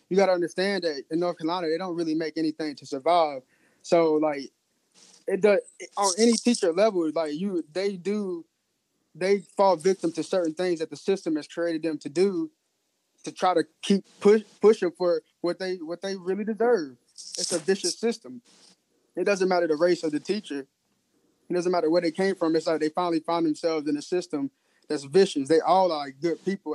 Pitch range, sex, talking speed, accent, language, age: 155-190 Hz, male, 200 wpm, American, English, 20-39